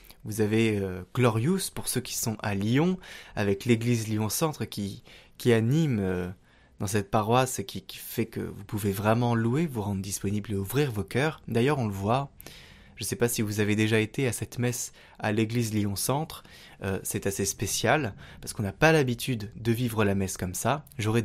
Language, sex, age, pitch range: French, male, 20-39, 105-135 Hz